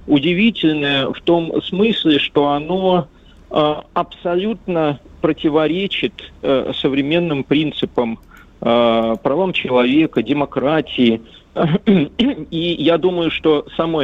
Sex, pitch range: male, 120-165 Hz